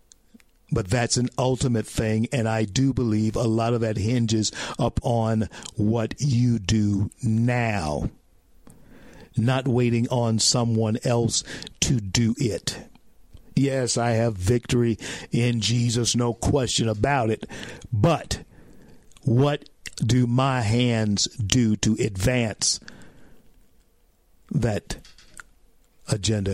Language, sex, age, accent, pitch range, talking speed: English, male, 50-69, American, 110-135 Hz, 105 wpm